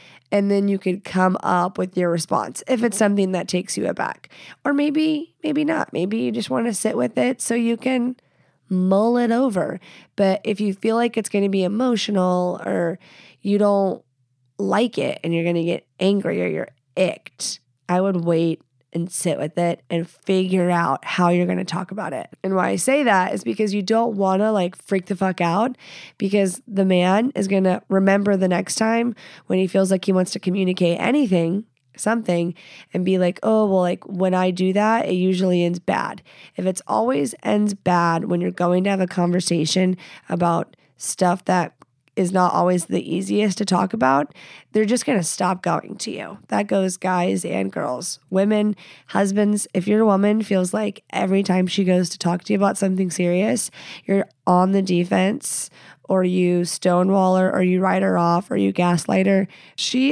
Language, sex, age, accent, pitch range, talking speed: English, female, 20-39, American, 175-205 Hz, 195 wpm